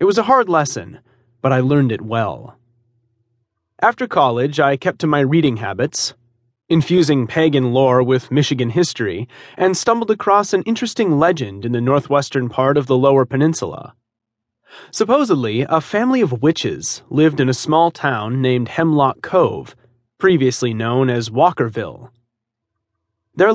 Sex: male